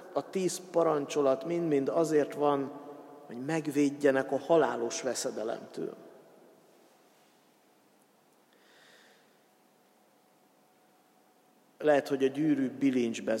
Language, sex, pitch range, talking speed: Hungarian, male, 130-160 Hz, 70 wpm